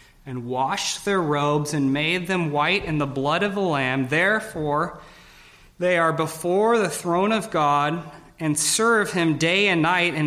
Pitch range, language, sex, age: 125-155 Hz, English, male, 30-49